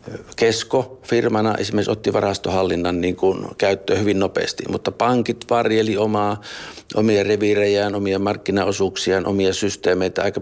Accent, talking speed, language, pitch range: native, 120 wpm, Finnish, 95-110 Hz